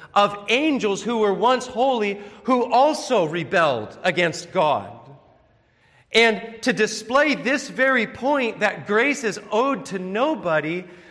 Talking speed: 125 wpm